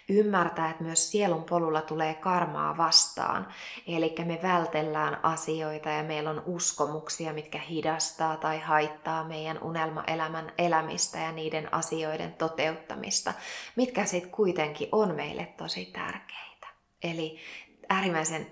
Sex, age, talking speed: female, 20-39, 115 wpm